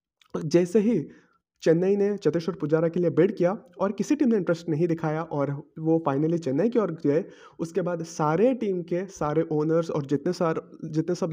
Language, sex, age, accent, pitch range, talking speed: Hindi, male, 30-49, native, 155-205 Hz, 190 wpm